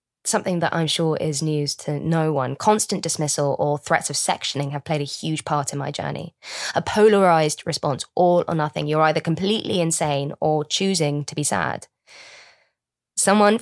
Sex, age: female, 20-39